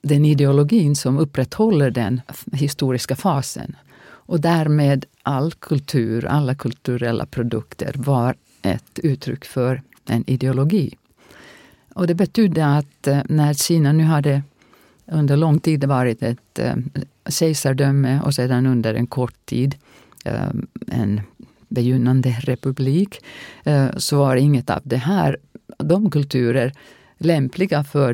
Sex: female